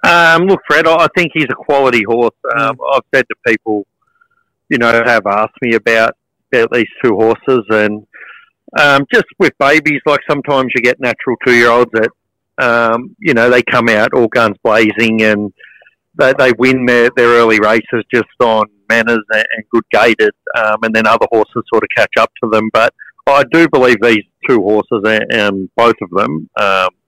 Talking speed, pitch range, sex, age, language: 185 wpm, 110-125 Hz, male, 50-69, English